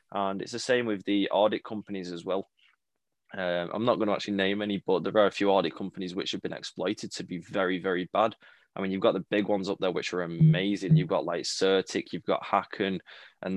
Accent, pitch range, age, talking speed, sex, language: British, 90-105 Hz, 20-39, 240 wpm, male, English